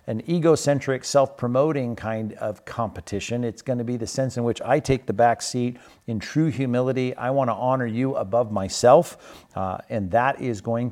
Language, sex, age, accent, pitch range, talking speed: English, male, 50-69, American, 105-135 Hz, 185 wpm